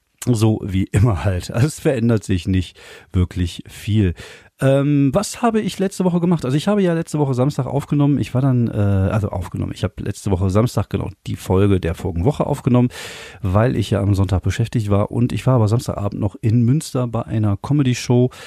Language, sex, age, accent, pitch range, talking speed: German, male, 40-59, German, 100-125 Hz, 195 wpm